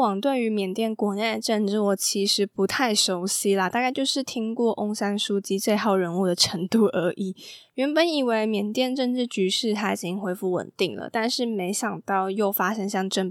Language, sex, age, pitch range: Chinese, female, 10-29, 190-250 Hz